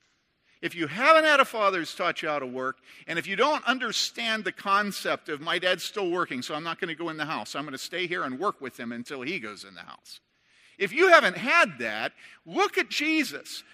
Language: English